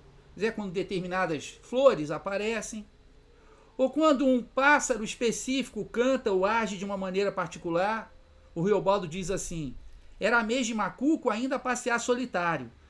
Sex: male